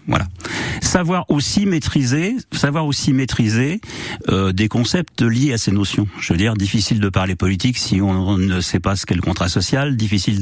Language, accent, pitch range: French, French, 95-130 Hz